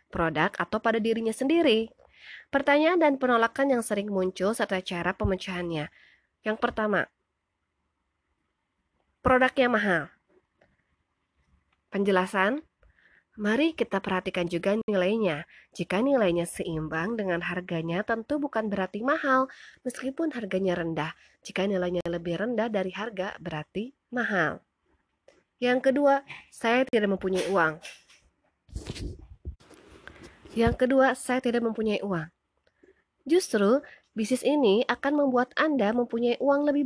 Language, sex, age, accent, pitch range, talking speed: Indonesian, female, 20-39, native, 180-250 Hz, 105 wpm